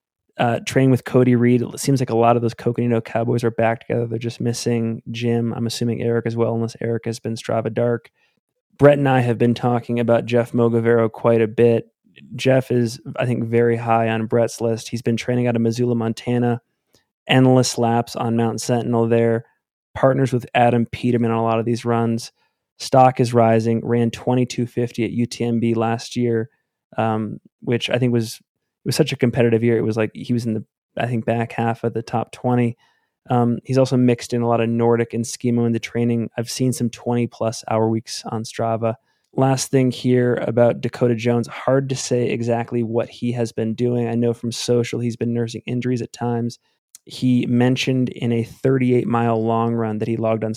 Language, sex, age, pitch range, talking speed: English, male, 20-39, 115-125 Hz, 200 wpm